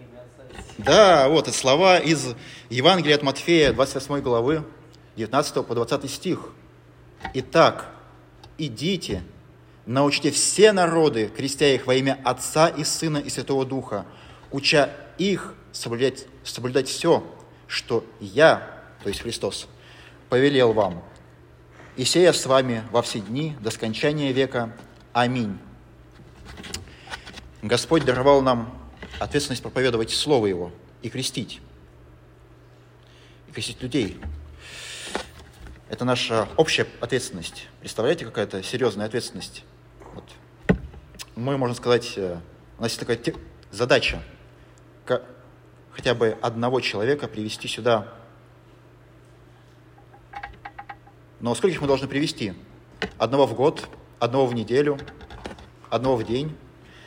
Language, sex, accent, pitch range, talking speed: Russian, male, native, 110-140 Hz, 105 wpm